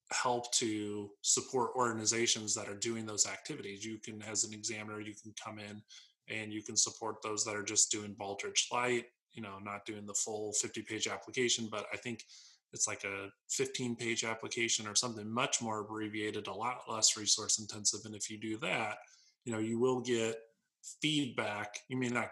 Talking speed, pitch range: 190 wpm, 105-120 Hz